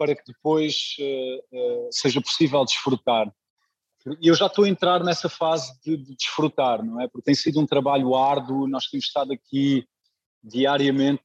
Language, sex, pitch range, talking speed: Portuguese, male, 135-160 Hz, 160 wpm